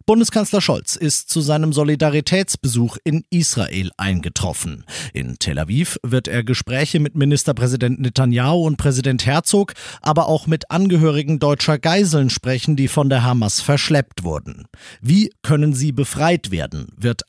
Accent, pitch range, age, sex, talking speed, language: German, 125-155 Hz, 40-59, male, 140 wpm, German